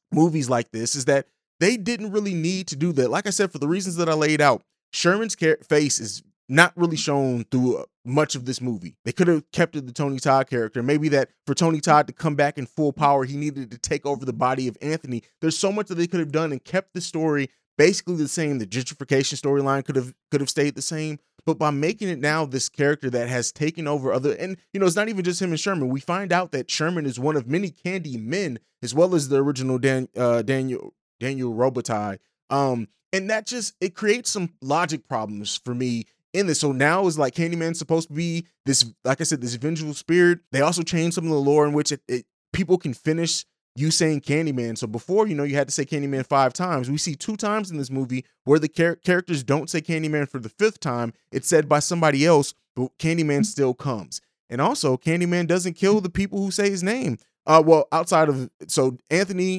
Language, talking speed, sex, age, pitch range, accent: English, 230 wpm, male, 30-49, 135-170 Hz, American